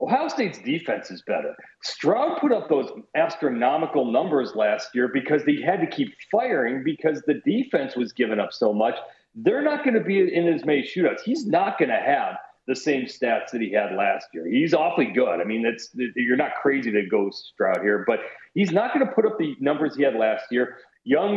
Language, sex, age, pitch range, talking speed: English, male, 40-59, 125-185 Hz, 215 wpm